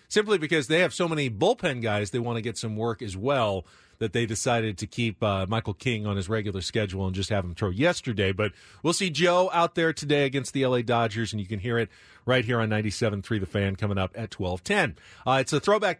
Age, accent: 40-59, American